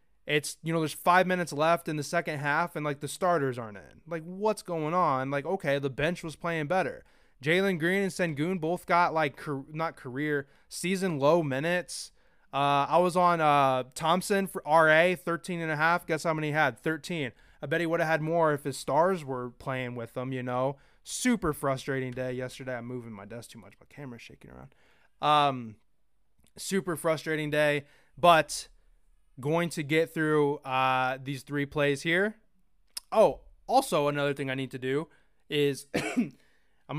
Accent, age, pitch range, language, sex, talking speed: American, 20-39, 135-165 Hz, English, male, 180 wpm